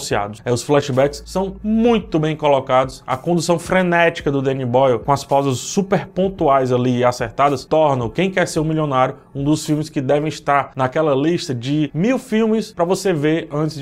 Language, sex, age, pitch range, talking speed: Portuguese, male, 20-39, 130-180 Hz, 180 wpm